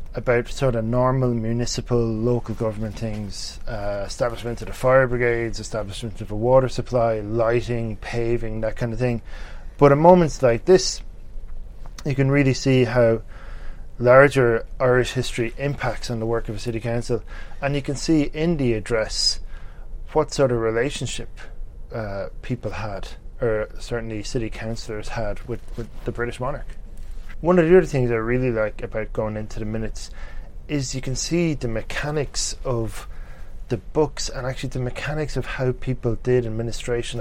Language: English